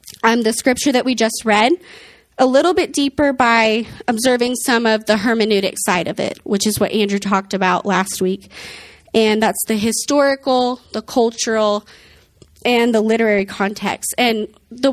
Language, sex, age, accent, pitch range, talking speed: English, female, 20-39, American, 200-245 Hz, 160 wpm